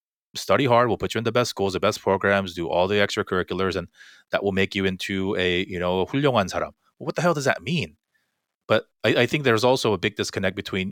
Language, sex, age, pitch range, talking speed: English, male, 30-49, 95-110 Hz, 225 wpm